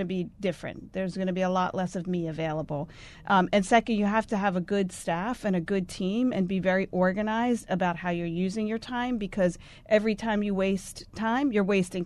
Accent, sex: American, female